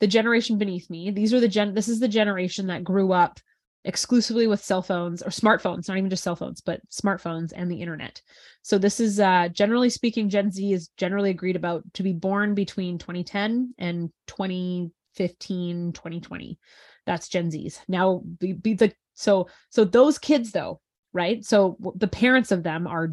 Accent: American